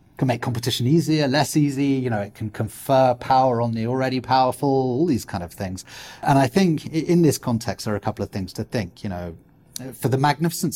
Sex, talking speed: male, 225 wpm